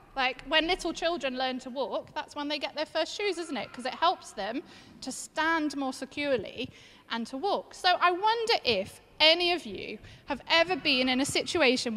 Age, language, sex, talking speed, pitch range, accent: 30-49, English, female, 200 wpm, 250-345 Hz, British